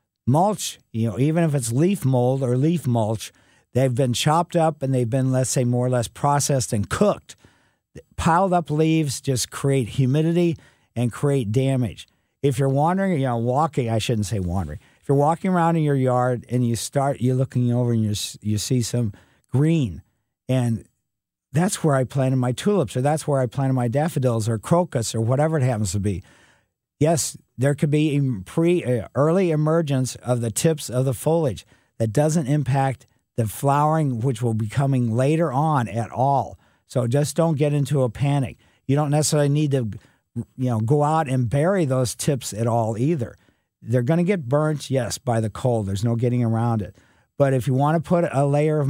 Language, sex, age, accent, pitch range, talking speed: English, male, 50-69, American, 120-145 Hz, 195 wpm